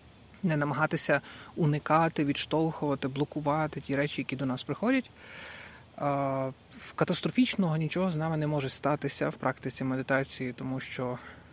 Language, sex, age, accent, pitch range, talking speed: Ukrainian, male, 20-39, native, 130-165 Hz, 120 wpm